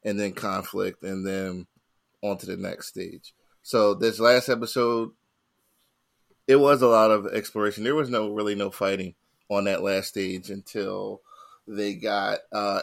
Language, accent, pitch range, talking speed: English, American, 100-125 Hz, 160 wpm